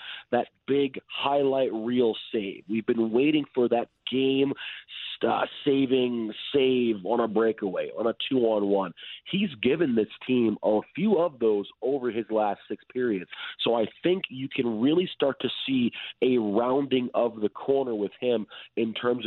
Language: English